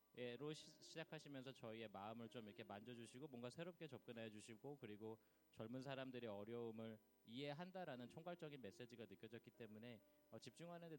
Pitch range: 110-130 Hz